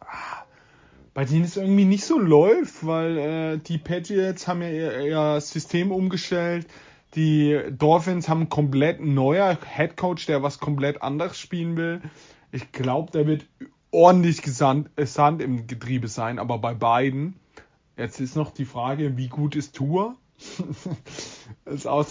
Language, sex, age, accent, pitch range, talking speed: German, male, 30-49, German, 130-165 Hz, 155 wpm